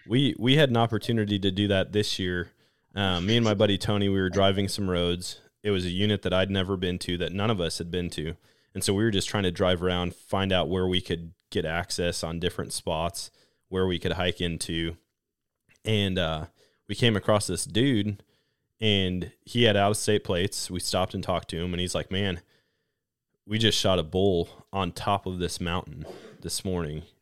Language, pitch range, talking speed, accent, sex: English, 90-110 Hz, 210 wpm, American, male